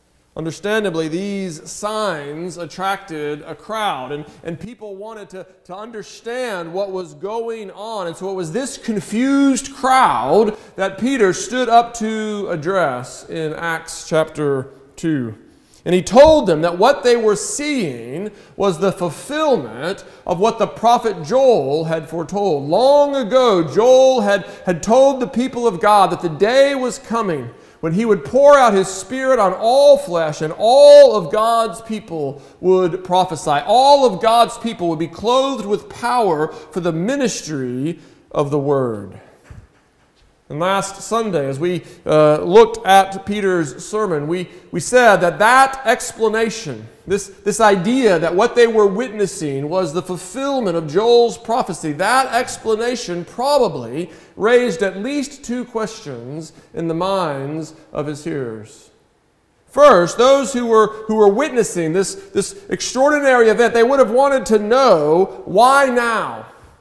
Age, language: 40-59, English